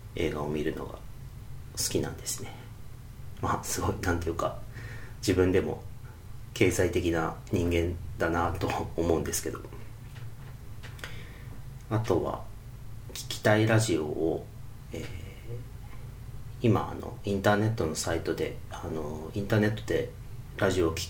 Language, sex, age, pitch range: Japanese, male, 40-59, 100-120 Hz